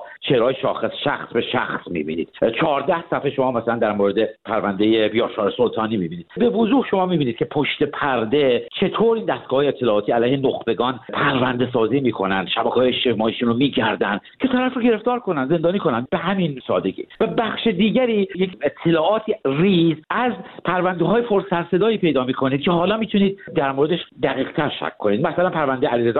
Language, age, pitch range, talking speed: Persian, 60-79, 125-210 Hz, 165 wpm